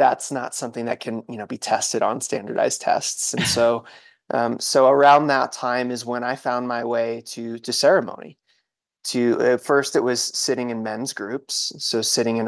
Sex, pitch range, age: male, 110-125 Hz, 20-39